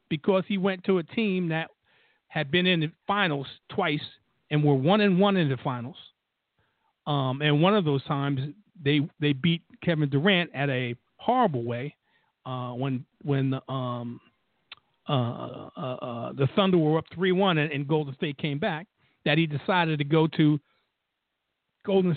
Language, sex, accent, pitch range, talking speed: English, male, American, 145-190 Hz, 170 wpm